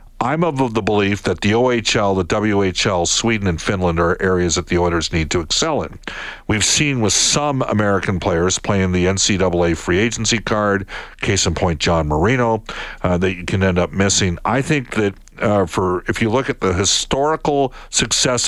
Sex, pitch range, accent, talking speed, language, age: male, 90-110 Hz, American, 185 wpm, English, 50-69